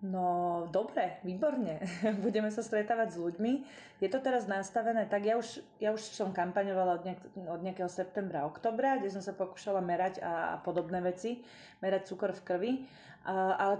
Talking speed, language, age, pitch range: 165 wpm, Slovak, 20-39, 180-200 Hz